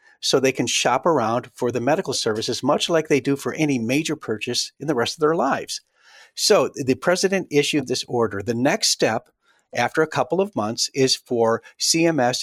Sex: male